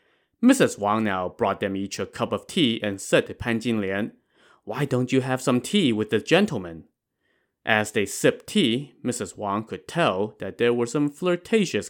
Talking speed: 185 wpm